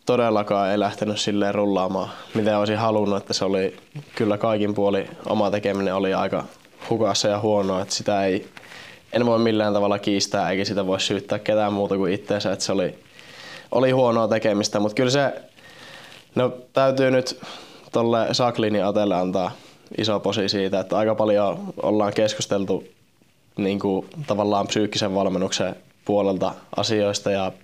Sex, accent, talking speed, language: male, native, 150 wpm, Finnish